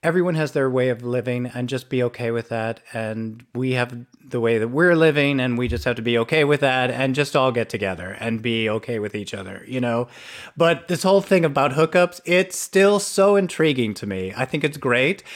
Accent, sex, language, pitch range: American, male, English, 115-175 Hz